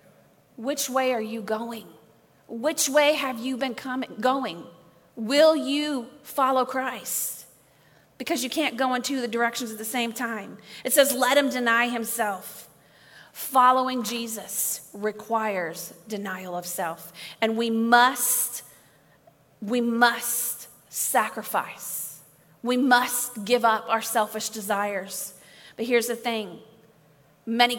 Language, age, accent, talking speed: English, 40-59, American, 125 wpm